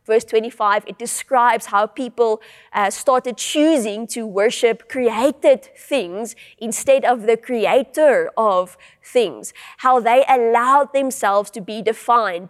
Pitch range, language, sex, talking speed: 200-255 Hz, English, female, 125 wpm